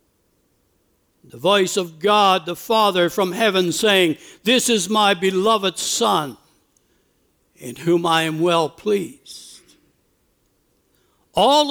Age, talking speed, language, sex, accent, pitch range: 60-79, 110 wpm, English, male, American, 210-270 Hz